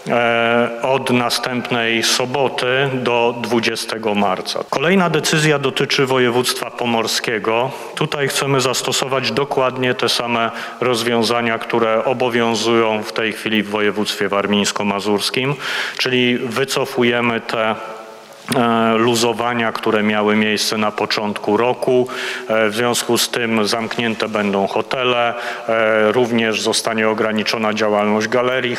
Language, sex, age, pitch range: Polish, male, 40-59, 110-120 Hz